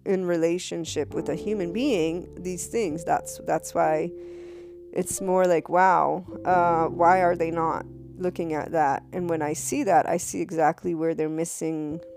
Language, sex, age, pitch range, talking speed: English, female, 20-39, 160-185 Hz, 170 wpm